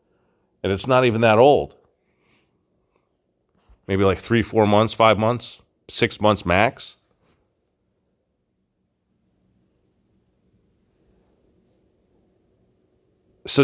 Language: English